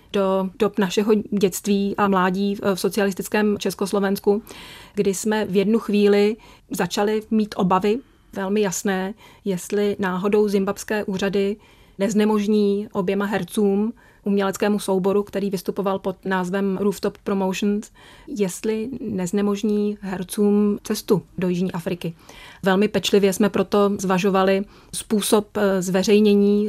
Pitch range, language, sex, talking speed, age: 195-210 Hz, Czech, female, 110 wpm, 30-49